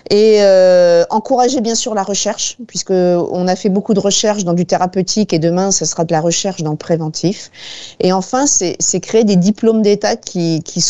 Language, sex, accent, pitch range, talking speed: French, female, French, 180-215 Hz, 205 wpm